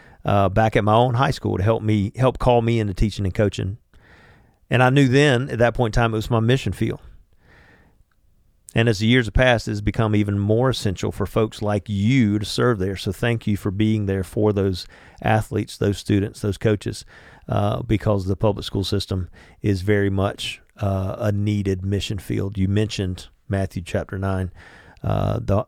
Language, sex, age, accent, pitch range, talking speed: English, male, 40-59, American, 100-120 Hz, 195 wpm